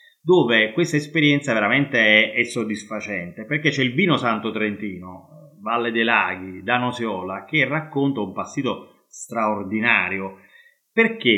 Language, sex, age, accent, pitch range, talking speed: Italian, male, 30-49, native, 110-150 Hz, 125 wpm